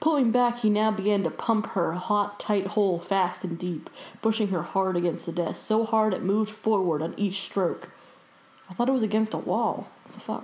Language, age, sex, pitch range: English, 20-39, female, 185-225 Hz